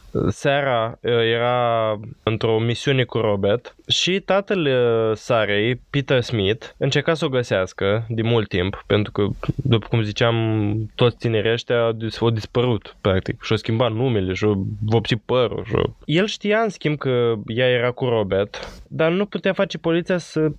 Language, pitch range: Romanian, 110-140 Hz